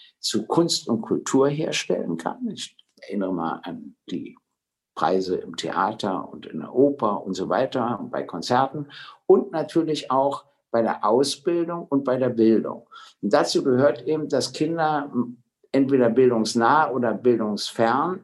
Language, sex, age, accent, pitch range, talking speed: English, male, 60-79, German, 115-150 Hz, 145 wpm